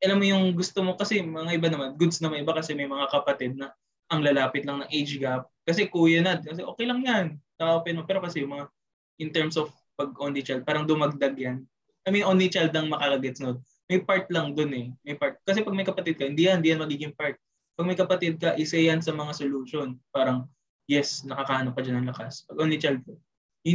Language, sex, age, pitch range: English, male, 20-39, 135-180 Hz